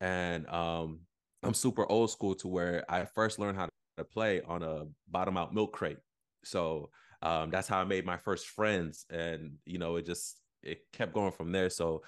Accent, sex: American, male